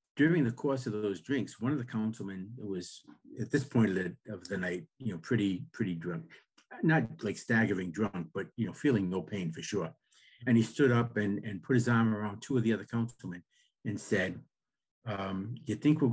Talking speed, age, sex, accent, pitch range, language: 210 wpm, 50-69, male, American, 100-120 Hz, English